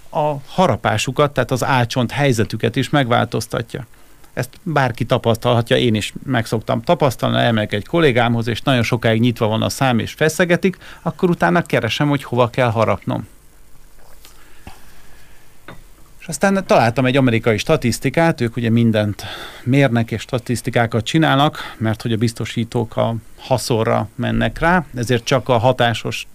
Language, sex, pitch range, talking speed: Hungarian, male, 115-145 Hz, 135 wpm